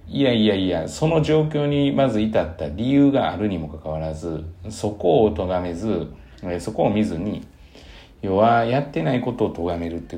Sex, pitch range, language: male, 80-115 Hz, Japanese